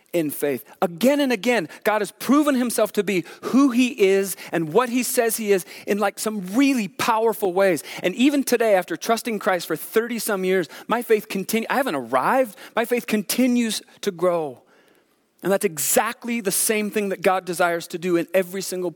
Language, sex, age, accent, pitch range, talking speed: English, male, 40-59, American, 170-225 Hz, 195 wpm